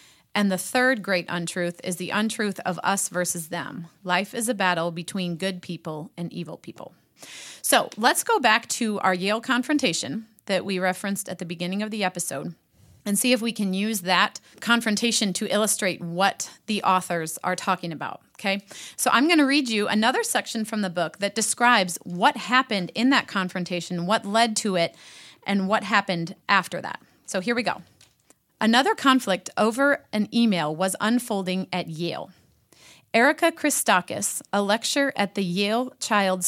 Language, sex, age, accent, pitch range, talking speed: English, female, 30-49, American, 180-230 Hz, 170 wpm